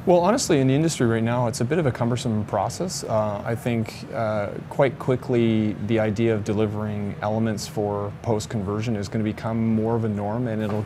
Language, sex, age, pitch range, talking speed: English, male, 30-49, 100-115 Hz, 205 wpm